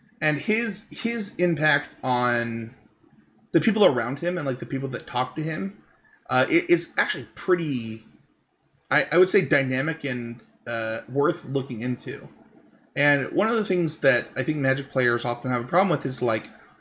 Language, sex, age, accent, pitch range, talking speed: English, male, 30-49, American, 120-155 Hz, 175 wpm